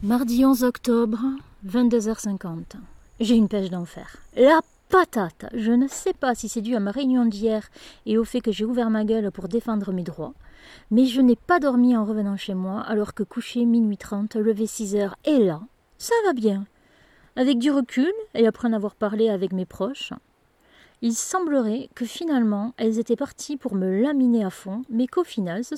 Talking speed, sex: 195 wpm, female